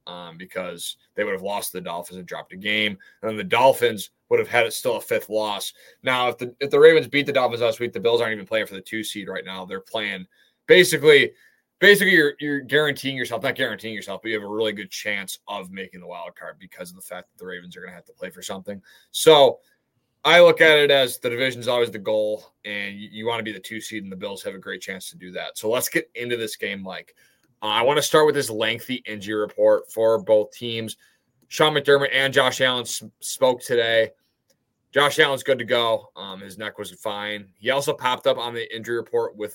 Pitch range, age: 105-150 Hz, 20-39